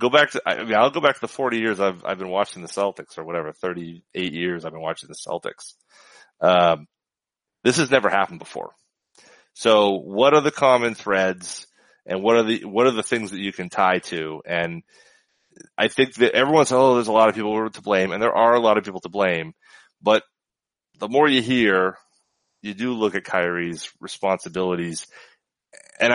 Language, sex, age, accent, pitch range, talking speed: English, male, 30-49, American, 95-125 Hz, 195 wpm